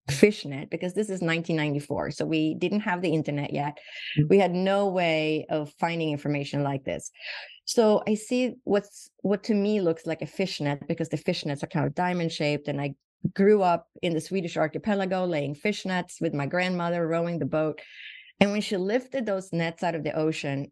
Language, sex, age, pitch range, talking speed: English, female, 30-49, 155-205 Hz, 190 wpm